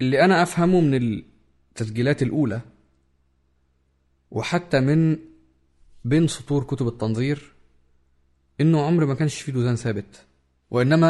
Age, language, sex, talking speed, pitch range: 20-39, Arabic, male, 110 wpm, 100-150 Hz